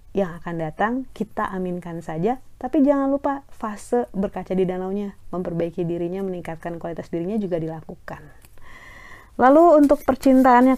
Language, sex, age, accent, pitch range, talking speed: Indonesian, female, 30-49, native, 170-220 Hz, 130 wpm